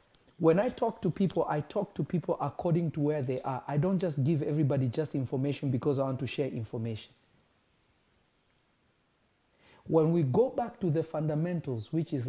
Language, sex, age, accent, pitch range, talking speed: English, male, 50-69, South African, 125-155 Hz, 175 wpm